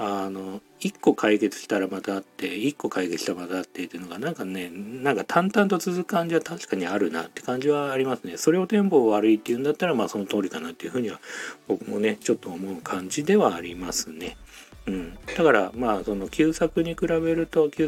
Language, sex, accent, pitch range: Japanese, male, native, 100-160 Hz